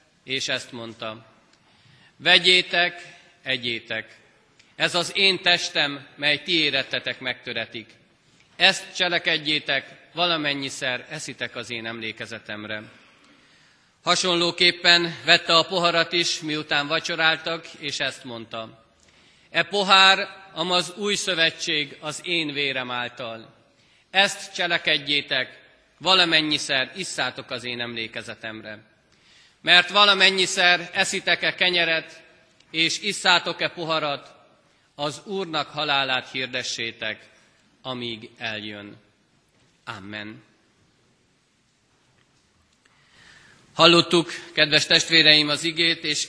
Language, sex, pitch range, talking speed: Hungarian, male, 125-170 Hz, 85 wpm